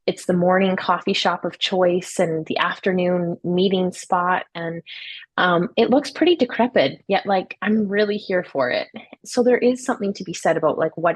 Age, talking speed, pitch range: 20-39, 190 wpm, 180-230 Hz